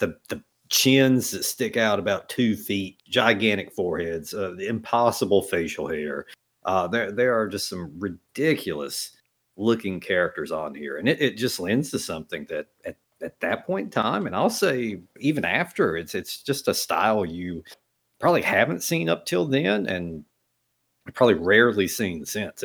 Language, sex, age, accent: English, male, 40-59, American